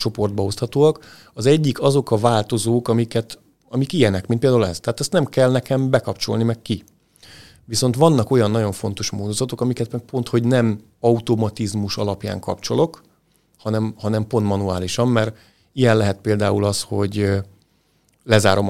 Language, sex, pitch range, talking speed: Hungarian, male, 105-120 Hz, 145 wpm